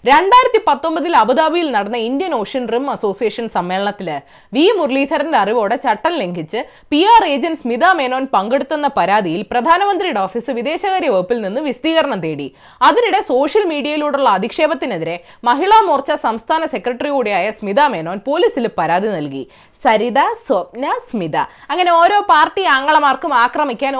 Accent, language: native, Malayalam